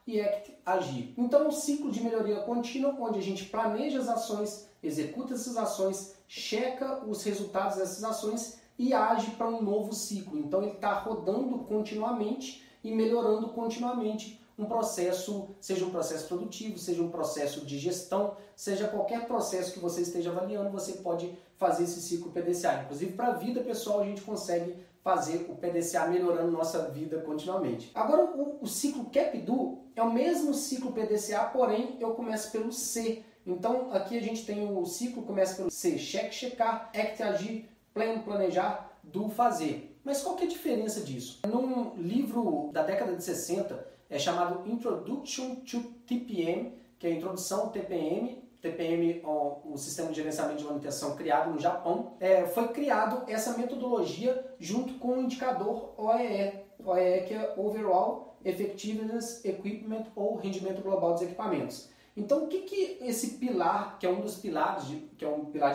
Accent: Brazilian